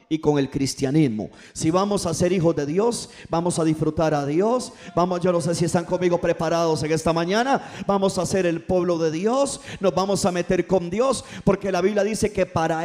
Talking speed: 215 wpm